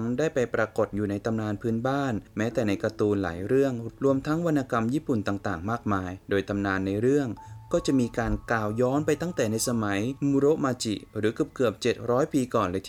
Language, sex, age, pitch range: Thai, male, 20-39, 100-125 Hz